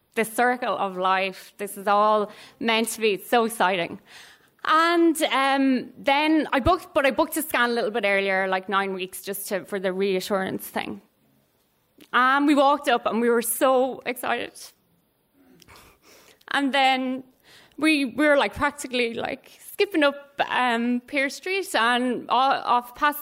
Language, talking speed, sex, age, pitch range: English, 160 wpm, female, 20-39, 210-270 Hz